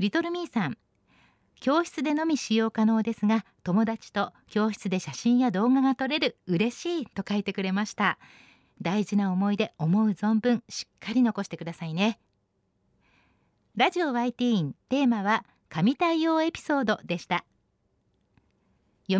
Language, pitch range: Japanese, 195-290 Hz